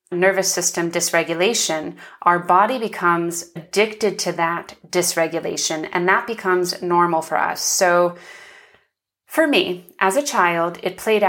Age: 30-49